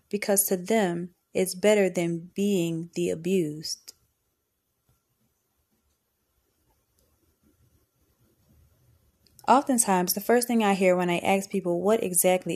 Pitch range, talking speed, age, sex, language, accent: 160-200 Hz, 100 wpm, 20-39, female, English, American